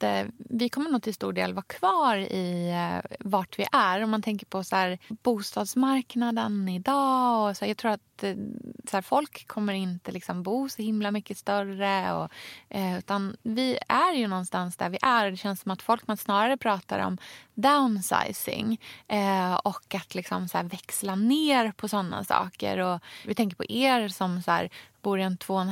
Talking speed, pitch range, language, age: 185 wpm, 180-230 Hz, Swedish, 20-39